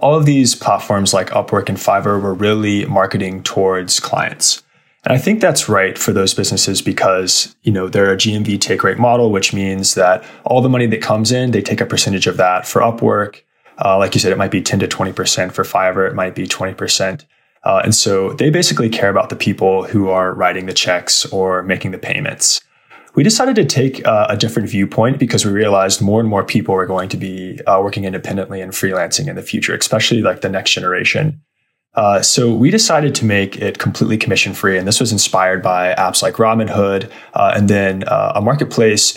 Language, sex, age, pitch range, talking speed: English, male, 20-39, 95-115 Hz, 210 wpm